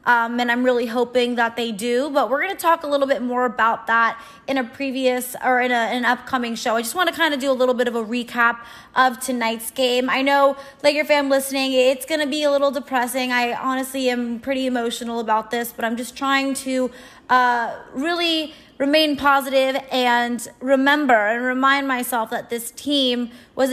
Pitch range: 235-275 Hz